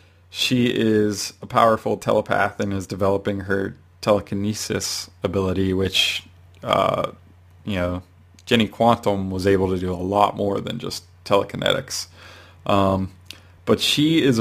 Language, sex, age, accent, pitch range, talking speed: English, male, 20-39, American, 95-105 Hz, 130 wpm